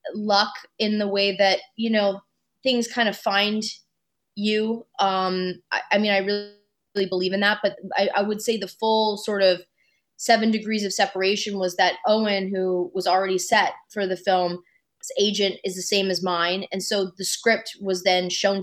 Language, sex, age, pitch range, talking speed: English, female, 20-39, 185-215 Hz, 190 wpm